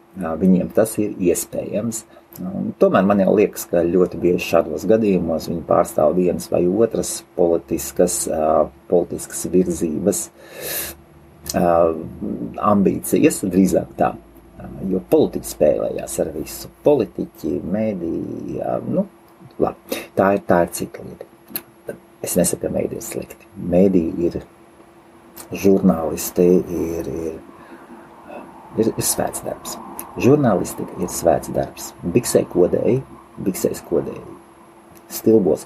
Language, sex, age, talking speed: English, male, 50-69, 100 wpm